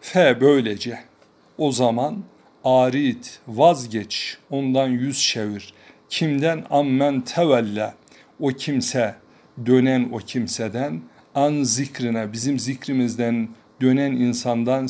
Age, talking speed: 50-69, 95 wpm